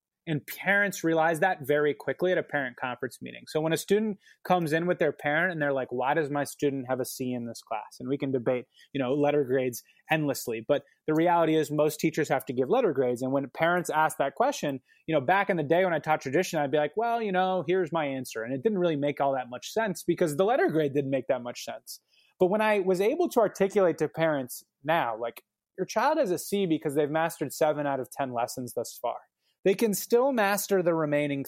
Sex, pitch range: male, 140-190 Hz